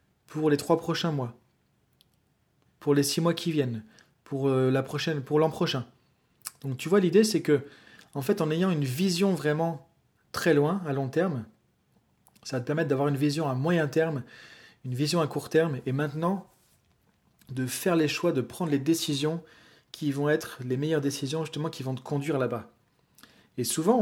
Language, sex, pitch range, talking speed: French, male, 140-175 Hz, 185 wpm